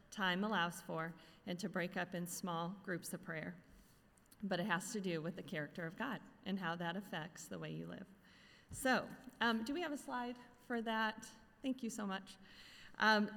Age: 40-59